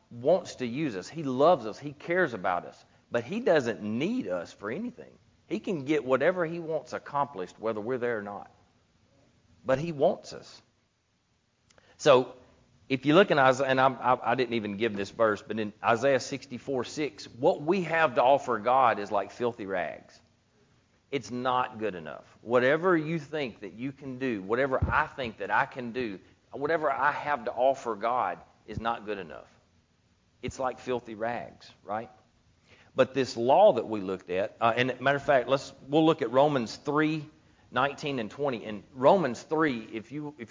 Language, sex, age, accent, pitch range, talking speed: English, male, 40-59, American, 105-135 Hz, 185 wpm